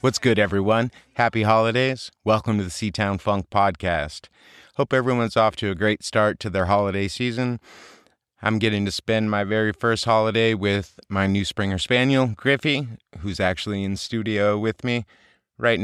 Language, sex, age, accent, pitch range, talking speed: English, male, 30-49, American, 100-125 Hz, 165 wpm